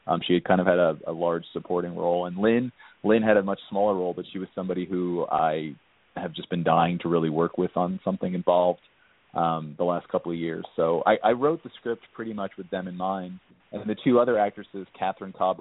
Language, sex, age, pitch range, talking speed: English, male, 30-49, 85-95 Hz, 240 wpm